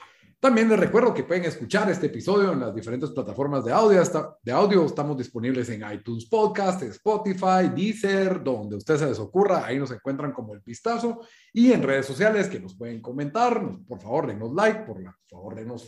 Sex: male